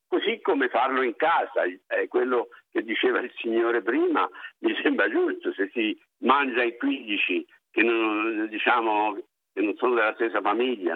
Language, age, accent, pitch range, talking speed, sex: Italian, 60-79, native, 335-395 Hz, 160 wpm, male